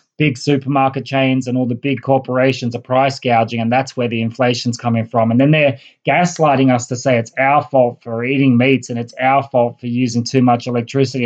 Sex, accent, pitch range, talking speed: male, Australian, 125-140 Hz, 215 wpm